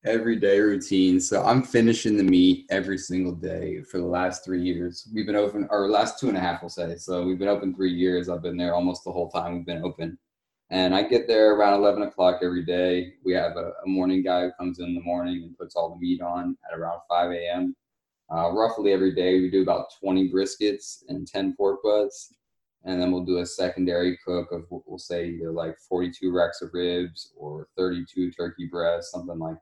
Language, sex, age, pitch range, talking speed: English, male, 20-39, 90-100 Hz, 220 wpm